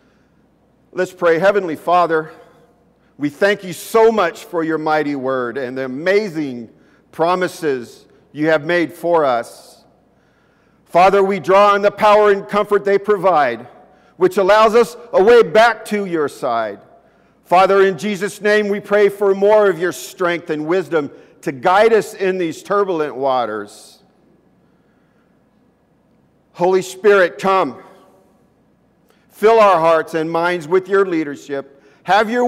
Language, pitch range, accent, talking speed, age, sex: English, 165-215 Hz, American, 135 wpm, 50-69, male